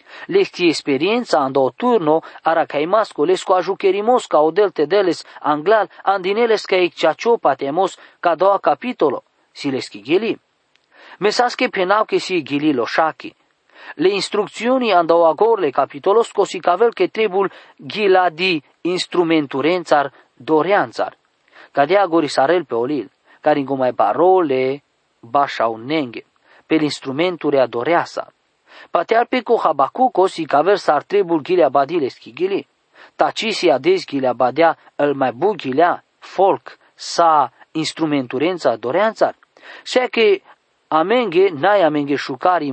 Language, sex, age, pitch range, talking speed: English, male, 40-59, 155-235 Hz, 115 wpm